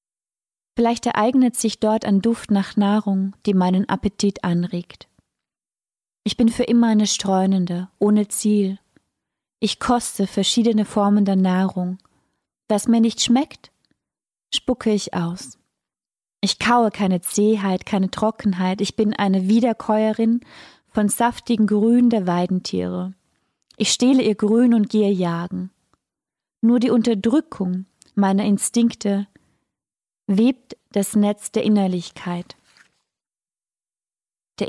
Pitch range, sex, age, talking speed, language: 195-230 Hz, female, 30-49, 115 wpm, German